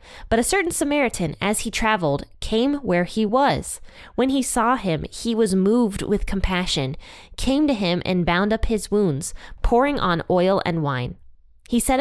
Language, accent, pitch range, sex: English, American, 175-235 Hz, female